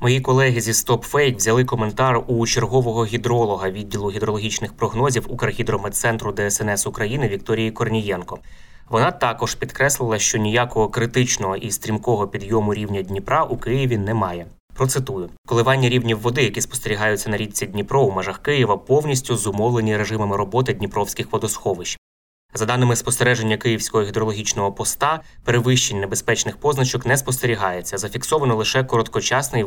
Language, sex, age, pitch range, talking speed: Ukrainian, male, 20-39, 100-125 Hz, 125 wpm